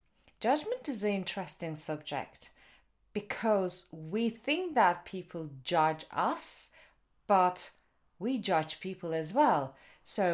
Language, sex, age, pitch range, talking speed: English, female, 30-49, 150-215 Hz, 110 wpm